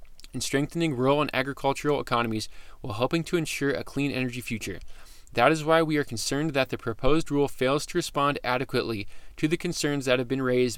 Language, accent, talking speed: English, American, 190 wpm